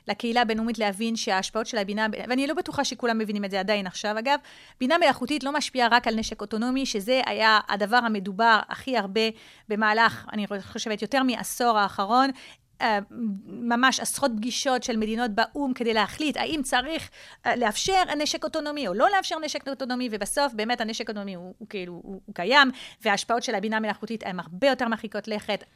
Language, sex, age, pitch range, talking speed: Hebrew, female, 30-49, 215-275 Hz, 170 wpm